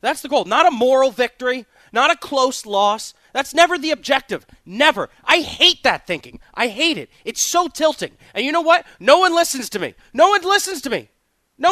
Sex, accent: male, American